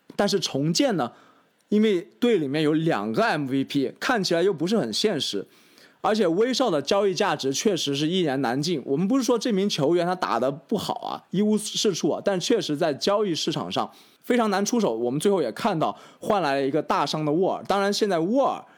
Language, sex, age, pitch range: Chinese, male, 20-39, 145-225 Hz